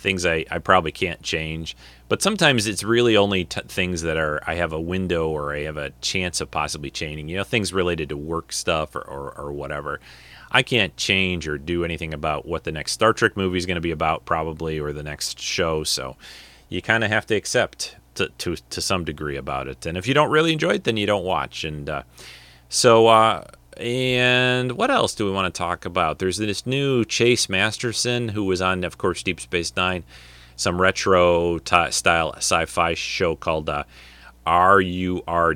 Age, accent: 30-49, American